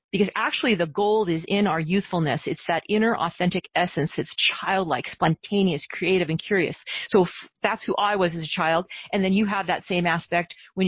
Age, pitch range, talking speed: 40-59, 170-215 Hz, 195 wpm